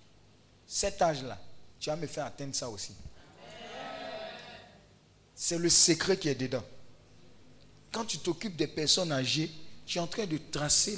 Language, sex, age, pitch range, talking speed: French, male, 40-59, 115-165 Hz, 150 wpm